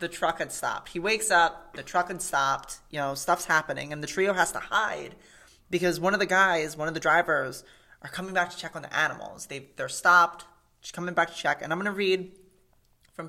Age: 30-49